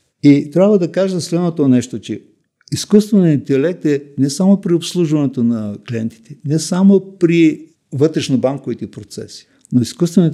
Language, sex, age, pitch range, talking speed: Bulgarian, male, 60-79, 120-155 Hz, 140 wpm